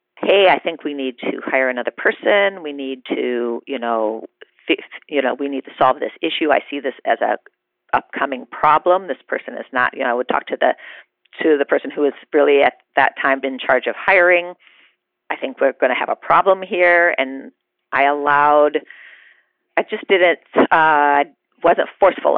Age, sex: 40-59, female